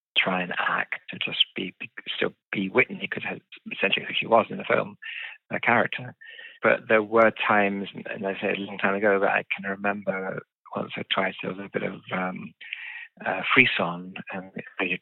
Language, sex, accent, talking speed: Swedish, male, British, 185 wpm